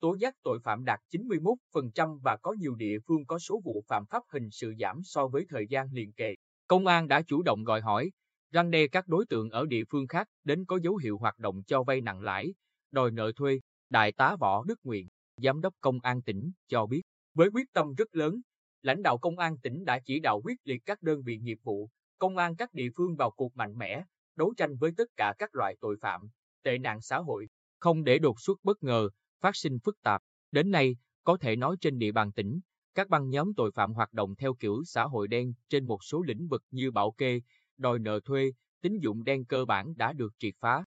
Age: 20-39